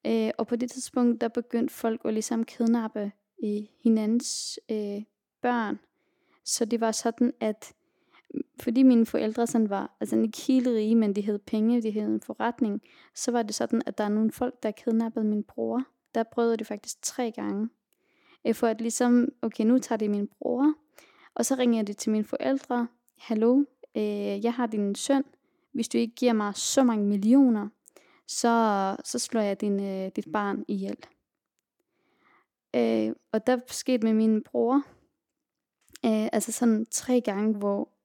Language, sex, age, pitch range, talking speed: Danish, female, 20-39, 210-245 Hz, 170 wpm